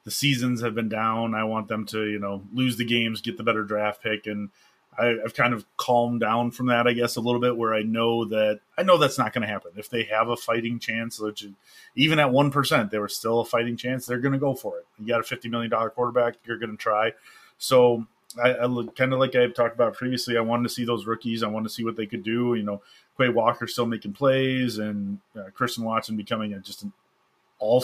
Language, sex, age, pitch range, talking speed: English, male, 30-49, 110-125 Hz, 250 wpm